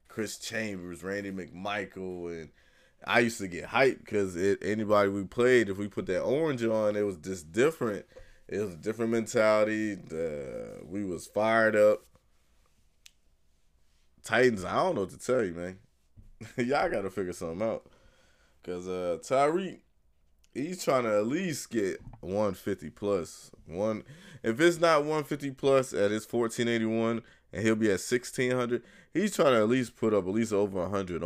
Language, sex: English, male